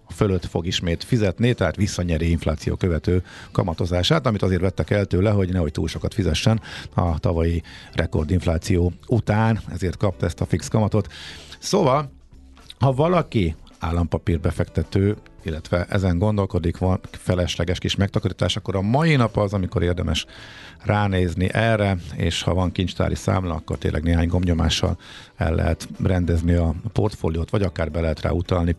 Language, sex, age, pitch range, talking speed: Hungarian, male, 50-69, 85-110 Hz, 145 wpm